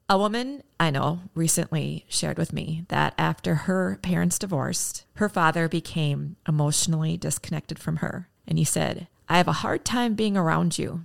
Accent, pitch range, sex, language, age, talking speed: American, 160-200 Hz, female, English, 30-49, 170 wpm